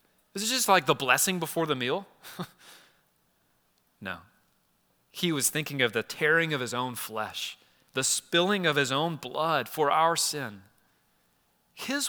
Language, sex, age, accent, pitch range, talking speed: English, male, 30-49, American, 120-175 Hz, 150 wpm